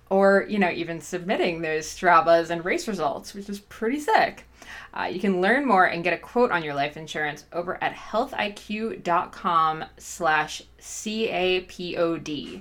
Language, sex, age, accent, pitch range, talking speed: English, female, 20-39, American, 170-215 Hz, 150 wpm